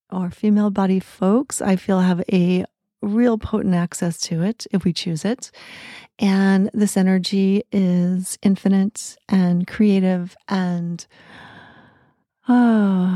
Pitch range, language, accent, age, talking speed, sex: 185-215 Hz, English, American, 40-59, 120 wpm, female